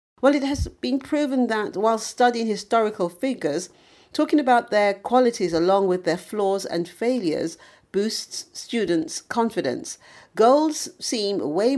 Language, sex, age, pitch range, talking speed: English, female, 50-69, 160-240 Hz, 130 wpm